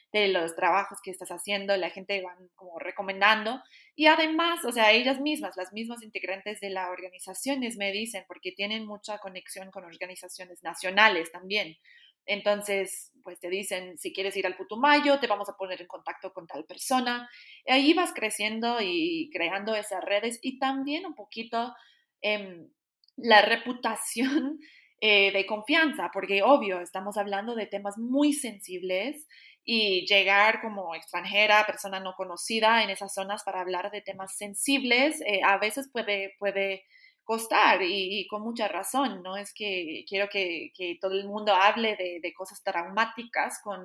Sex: female